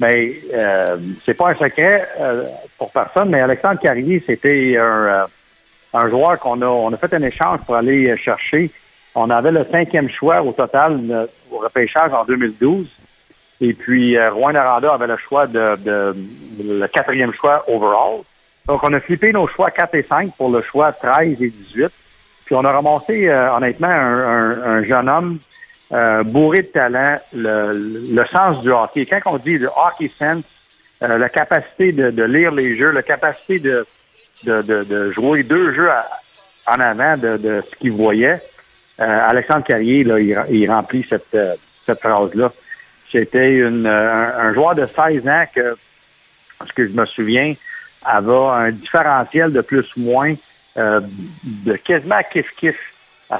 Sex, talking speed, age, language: male, 175 wpm, 60-79, French